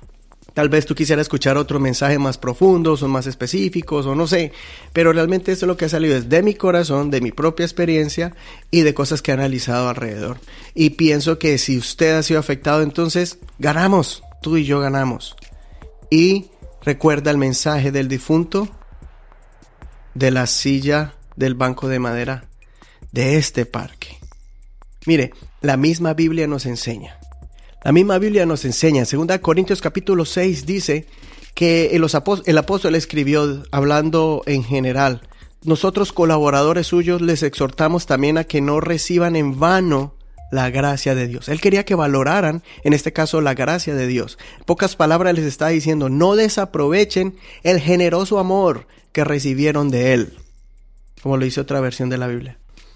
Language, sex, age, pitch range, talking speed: Spanish, male, 30-49, 130-165 Hz, 160 wpm